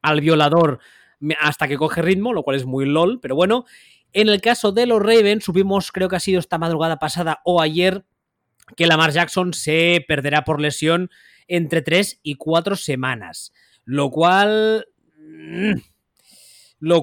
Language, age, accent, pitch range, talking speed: Spanish, 20-39, Spanish, 145-180 Hz, 155 wpm